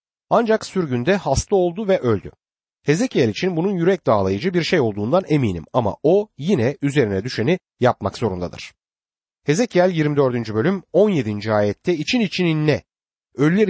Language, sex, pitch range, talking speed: Turkish, male, 115-185 Hz, 135 wpm